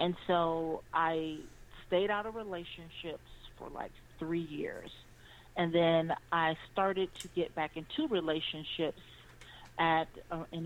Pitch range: 160-185 Hz